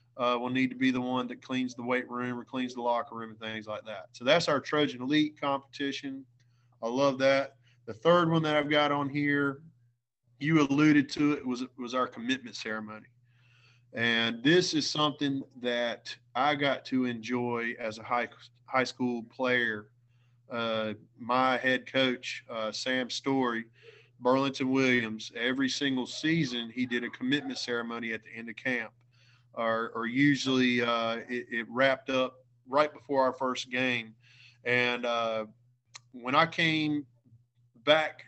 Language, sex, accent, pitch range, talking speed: English, male, American, 120-145 Hz, 160 wpm